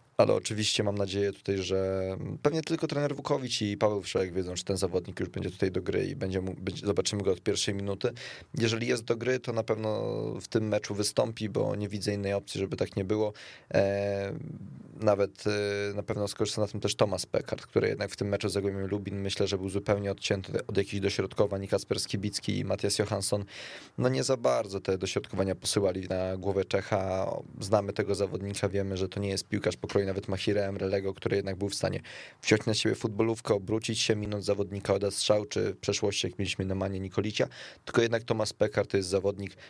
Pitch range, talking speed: 95-110 Hz, 200 wpm